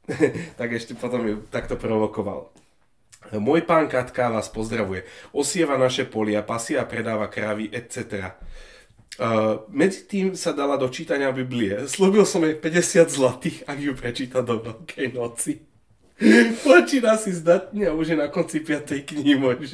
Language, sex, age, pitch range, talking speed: Slovak, male, 30-49, 110-150 Hz, 145 wpm